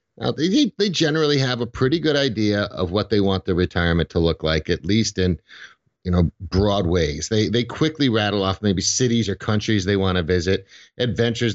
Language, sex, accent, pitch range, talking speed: English, male, American, 90-115 Hz, 205 wpm